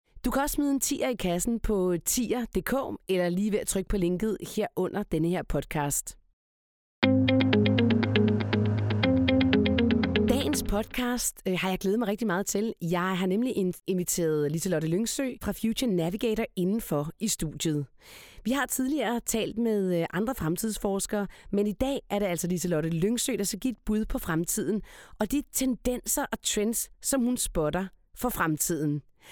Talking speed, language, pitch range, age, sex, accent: 150 wpm, Danish, 175-245 Hz, 30-49, female, native